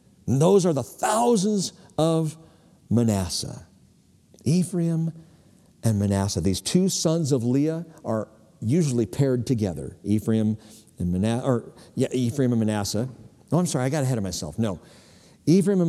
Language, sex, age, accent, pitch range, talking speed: English, male, 60-79, American, 110-150 Hz, 145 wpm